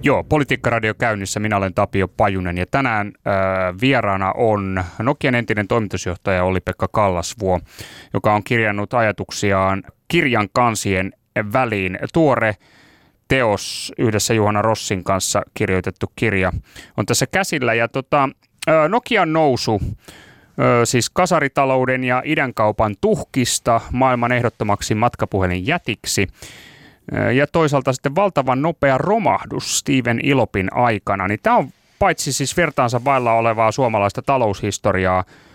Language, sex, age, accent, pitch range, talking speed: Finnish, male, 30-49, native, 105-135 Hz, 120 wpm